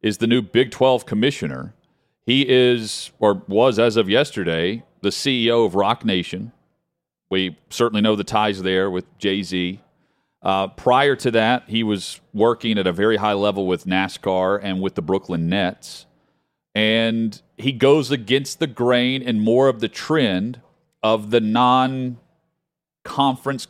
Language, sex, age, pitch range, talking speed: English, male, 40-59, 100-125 Hz, 150 wpm